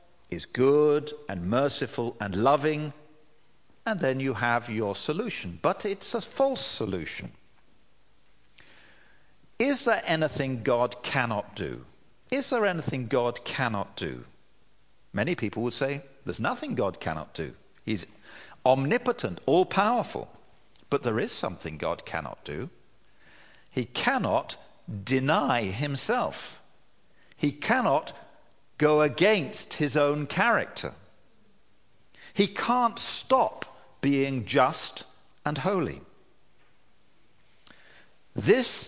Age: 50-69